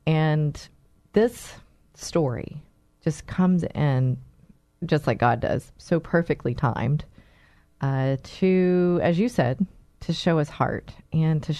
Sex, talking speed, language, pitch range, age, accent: female, 125 wpm, English, 135-170 Hz, 30-49, American